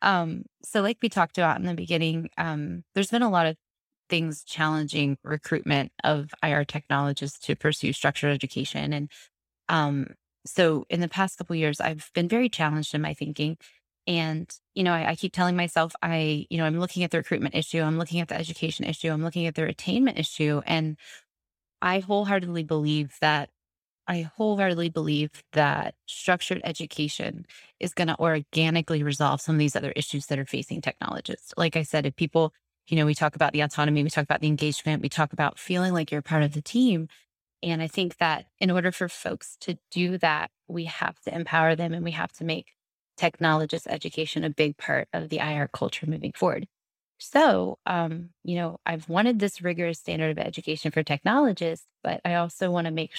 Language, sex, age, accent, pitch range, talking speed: English, female, 20-39, American, 150-175 Hz, 195 wpm